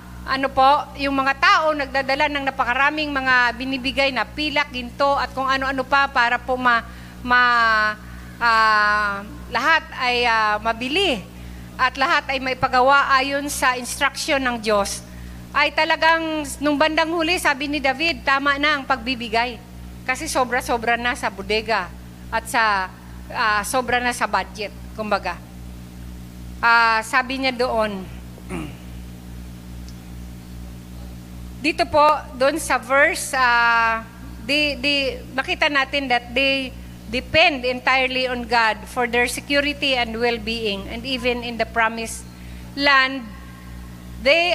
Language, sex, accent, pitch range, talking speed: Filipino, female, native, 200-275 Hz, 125 wpm